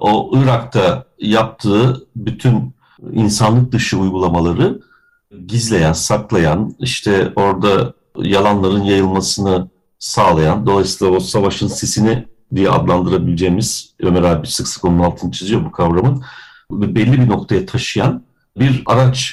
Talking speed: 110 wpm